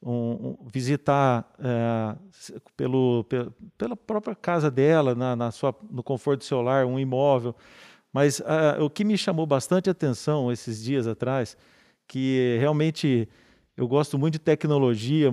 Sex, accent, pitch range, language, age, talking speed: male, Brazilian, 125-160 Hz, Portuguese, 40-59, 150 wpm